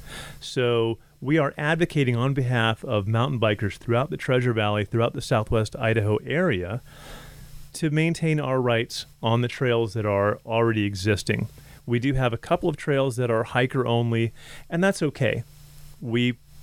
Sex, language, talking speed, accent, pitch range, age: male, English, 160 wpm, American, 110-135 Hz, 30-49